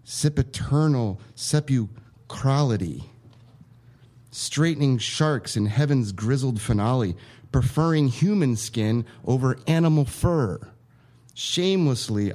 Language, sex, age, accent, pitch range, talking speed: English, male, 30-49, American, 115-145 Hz, 70 wpm